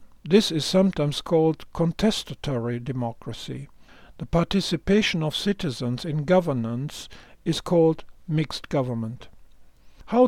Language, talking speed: English, 100 wpm